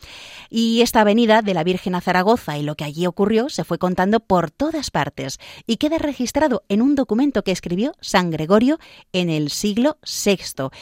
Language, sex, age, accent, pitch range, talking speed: Spanish, female, 30-49, Spanish, 170-245 Hz, 185 wpm